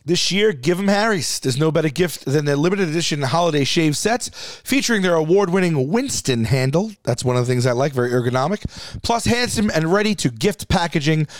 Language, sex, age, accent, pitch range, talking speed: English, male, 30-49, American, 140-195 Hz, 200 wpm